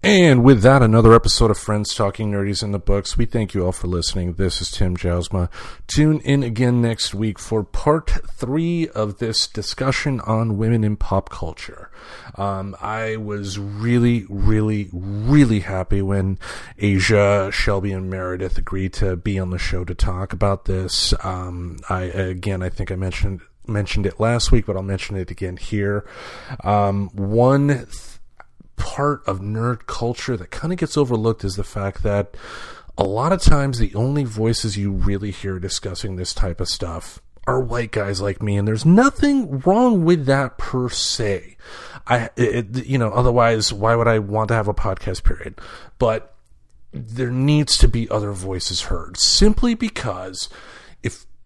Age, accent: 40-59, American